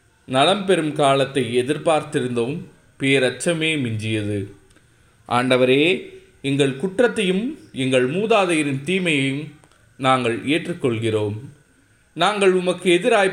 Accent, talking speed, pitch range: native, 75 wpm, 115-155 Hz